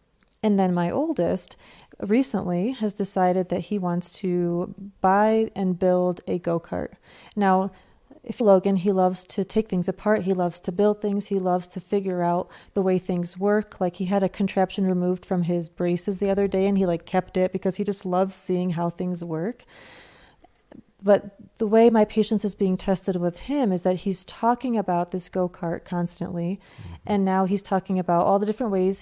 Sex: female